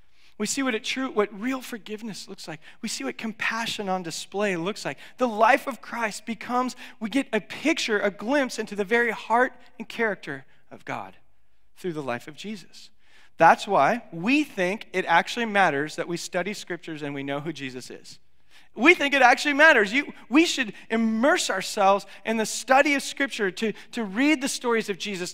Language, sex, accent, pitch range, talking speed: English, male, American, 185-265 Hz, 195 wpm